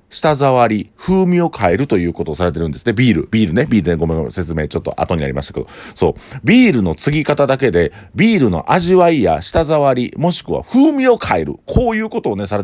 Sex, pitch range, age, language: male, 85-140 Hz, 40-59, Japanese